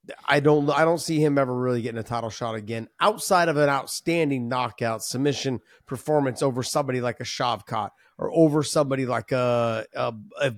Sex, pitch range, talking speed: male, 120-150 Hz, 180 wpm